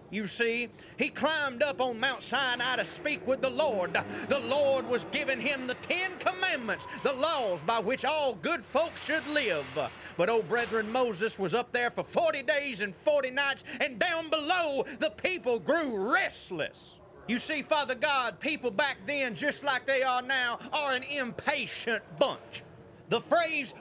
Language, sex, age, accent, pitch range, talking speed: English, male, 30-49, American, 245-320 Hz, 170 wpm